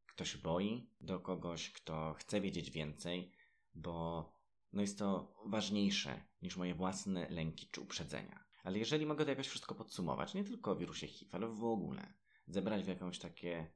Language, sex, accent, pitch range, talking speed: Polish, male, native, 85-105 Hz, 165 wpm